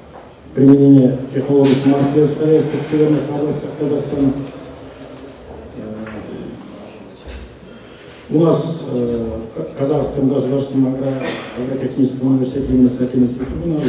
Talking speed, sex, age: 70 wpm, male, 40-59